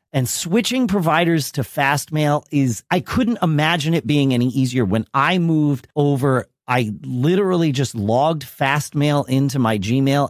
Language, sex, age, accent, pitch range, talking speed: English, male, 40-59, American, 135-180 Hz, 145 wpm